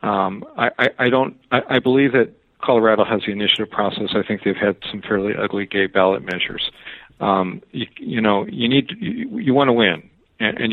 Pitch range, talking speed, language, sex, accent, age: 100-120 Hz, 205 wpm, English, male, American, 50-69